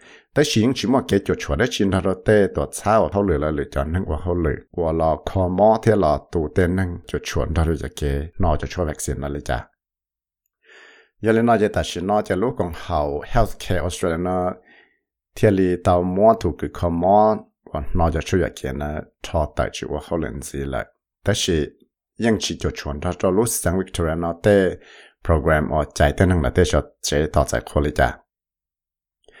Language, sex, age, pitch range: English, male, 60-79, 75-100 Hz